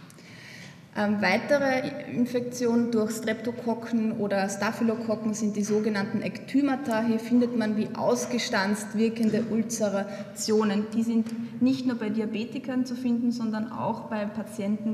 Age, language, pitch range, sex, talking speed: 20-39, German, 210-245 Hz, female, 115 wpm